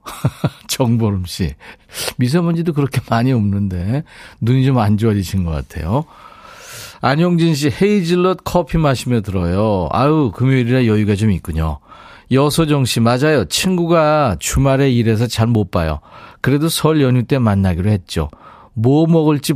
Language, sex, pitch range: Korean, male, 105-160 Hz